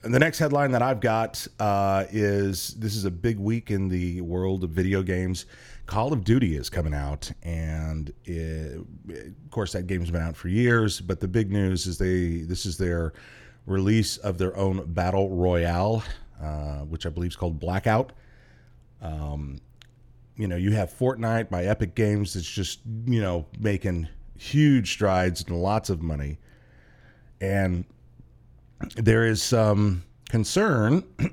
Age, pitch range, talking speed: 30-49, 85-110 Hz, 160 wpm